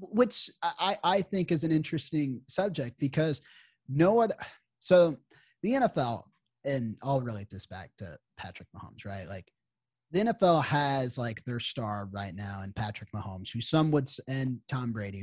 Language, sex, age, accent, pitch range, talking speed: English, male, 30-49, American, 110-155 Hz, 160 wpm